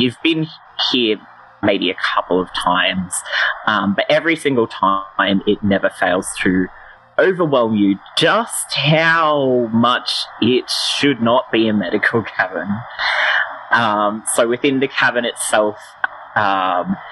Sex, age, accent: male, 20-39, Australian